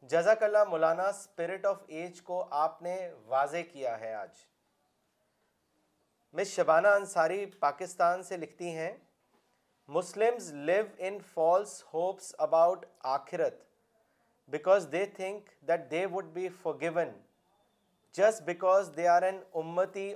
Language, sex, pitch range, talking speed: Urdu, male, 165-195 Hz, 125 wpm